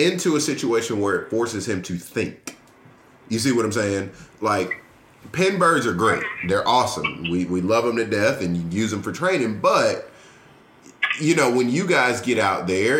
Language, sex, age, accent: English, male, 30-49, American